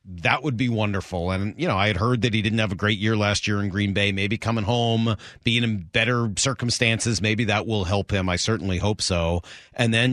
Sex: male